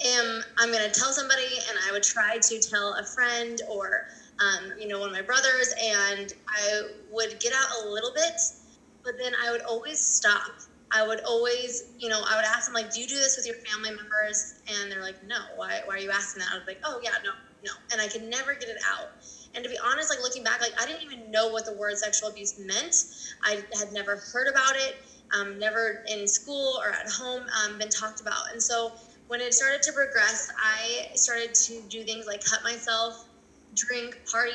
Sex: female